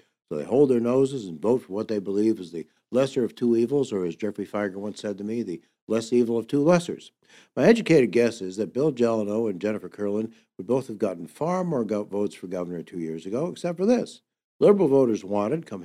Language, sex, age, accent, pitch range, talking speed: English, male, 60-79, American, 105-170 Hz, 225 wpm